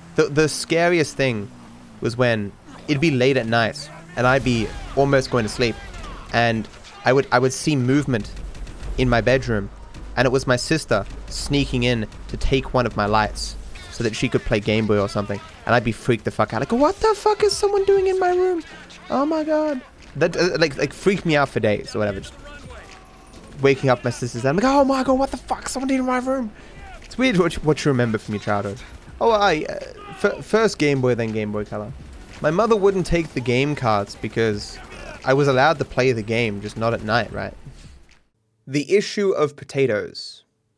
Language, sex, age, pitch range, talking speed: English, male, 20-39, 110-150 Hz, 215 wpm